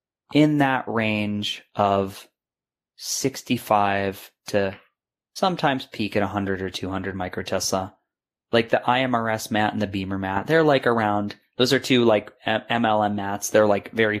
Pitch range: 100-125 Hz